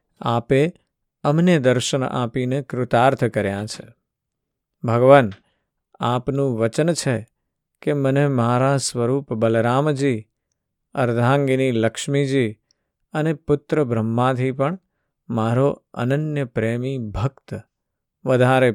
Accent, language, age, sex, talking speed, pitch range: native, Gujarati, 50-69, male, 85 wpm, 120-140 Hz